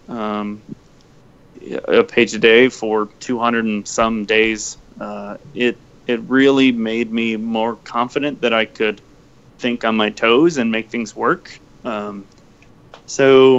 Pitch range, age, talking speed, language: 110-135 Hz, 30-49, 135 wpm, English